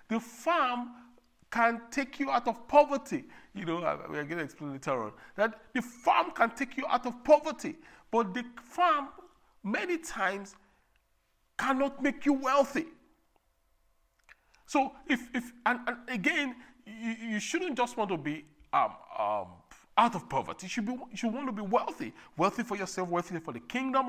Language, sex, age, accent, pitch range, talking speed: English, male, 50-69, Nigerian, 175-270 Hz, 170 wpm